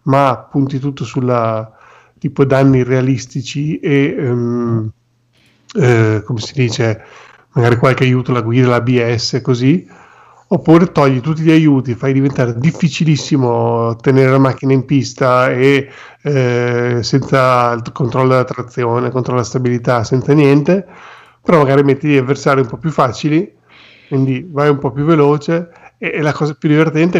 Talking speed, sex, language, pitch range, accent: 140 wpm, male, Italian, 125-150 Hz, native